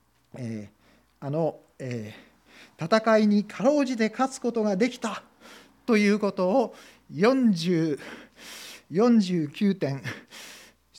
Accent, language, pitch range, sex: native, Japanese, 135-205 Hz, male